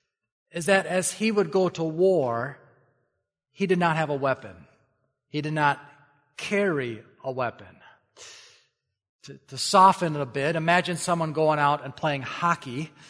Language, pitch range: English, 150-190 Hz